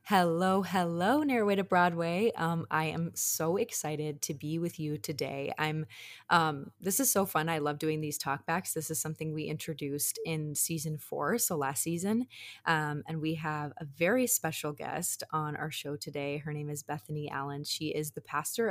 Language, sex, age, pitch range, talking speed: English, female, 20-39, 150-180 Hz, 185 wpm